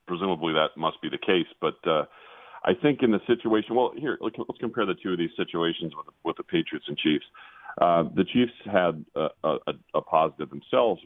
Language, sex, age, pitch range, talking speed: English, male, 40-59, 75-90 Hz, 200 wpm